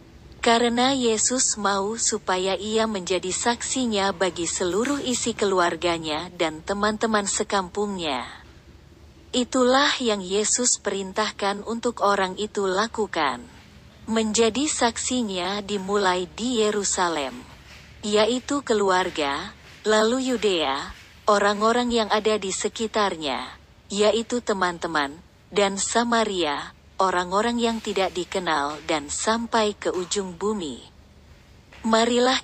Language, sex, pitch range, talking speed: Indonesian, female, 180-230 Hz, 90 wpm